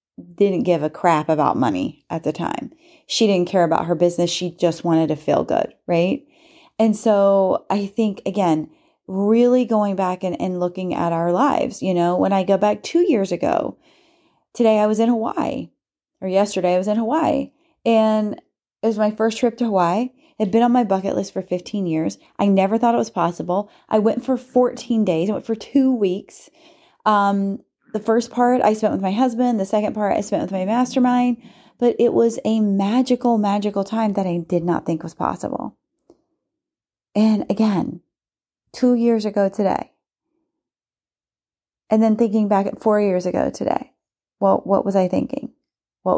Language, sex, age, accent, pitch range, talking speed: English, female, 30-49, American, 190-250 Hz, 185 wpm